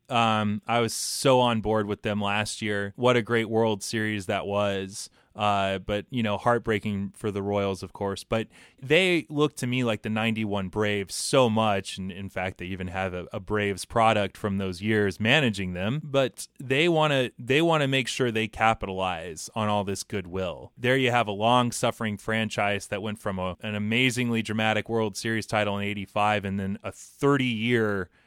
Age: 20-39